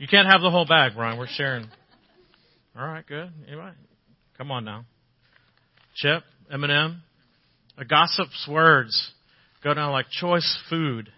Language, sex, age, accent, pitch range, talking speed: English, male, 40-59, American, 140-190 Hz, 140 wpm